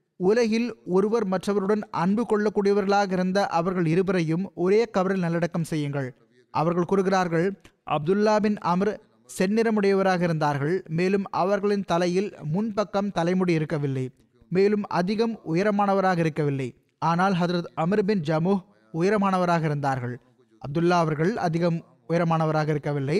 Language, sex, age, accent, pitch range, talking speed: Tamil, male, 20-39, native, 160-200 Hz, 105 wpm